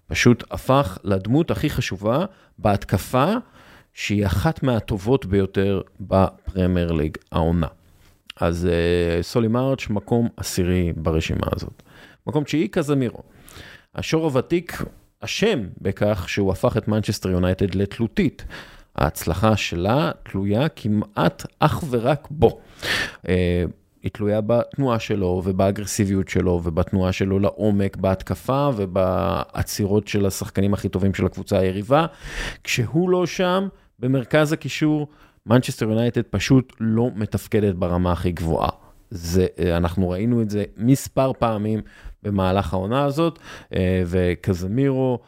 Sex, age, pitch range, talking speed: male, 30-49, 95-125 Hz, 110 wpm